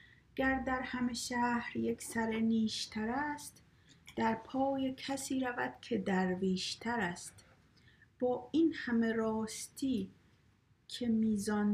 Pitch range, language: 180-240 Hz, Persian